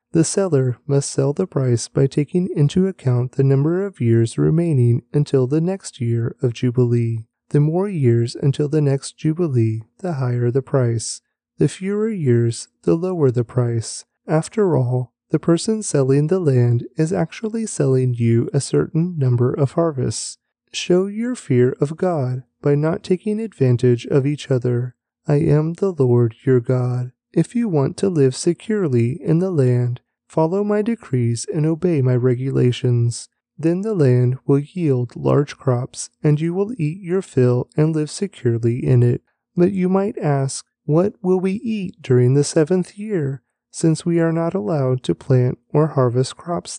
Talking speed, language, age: 165 wpm, English, 30-49